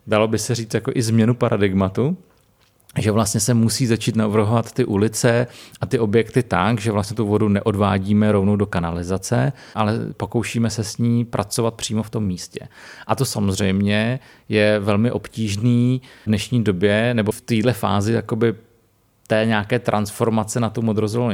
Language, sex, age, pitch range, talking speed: Czech, male, 30-49, 105-120 Hz, 165 wpm